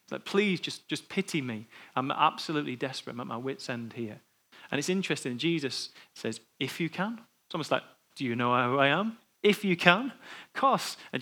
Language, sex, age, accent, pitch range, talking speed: English, male, 30-49, British, 125-160 Hz, 205 wpm